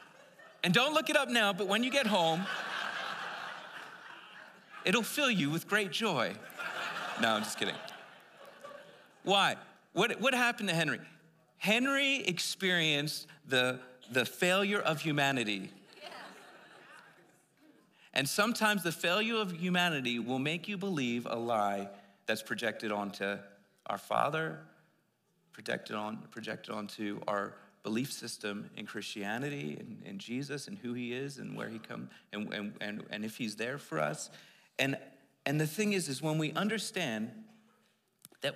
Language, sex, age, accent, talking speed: English, male, 40-59, American, 140 wpm